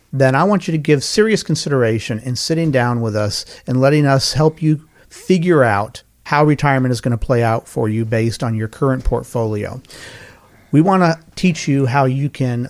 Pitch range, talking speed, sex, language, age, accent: 115-150 Hz, 200 wpm, male, English, 40-59, American